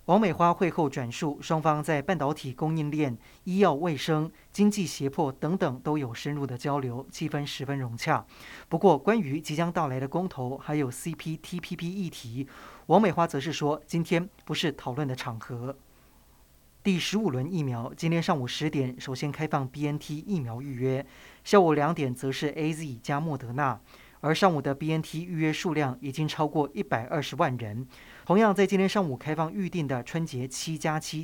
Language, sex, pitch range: Chinese, male, 135-170 Hz